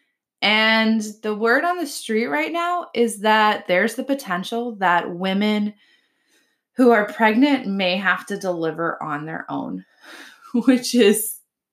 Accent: American